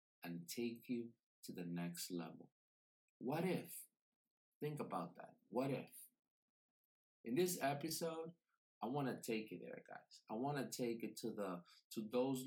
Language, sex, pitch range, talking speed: English, male, 110-135 Hz, 160 wpm